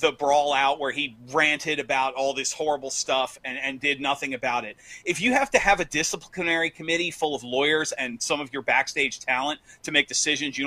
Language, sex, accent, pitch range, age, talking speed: English, male, American, 135-170 Hz, 30-49, 215 wpm